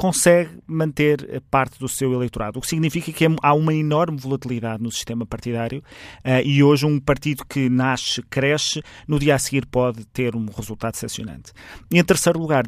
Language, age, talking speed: Portuguese, 30-49, 170 wpm